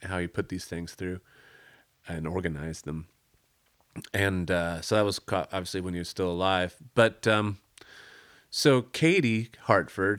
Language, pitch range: English, 85-110 Hz